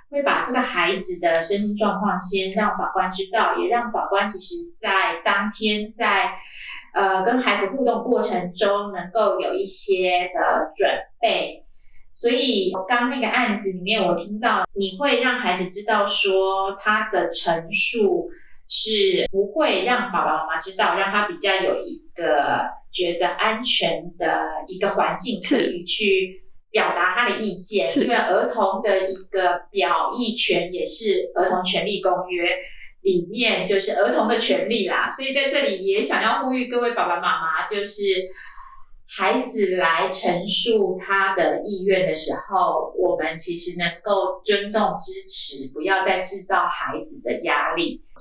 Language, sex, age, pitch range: Chinese, female, 20-39, 185-235 Hz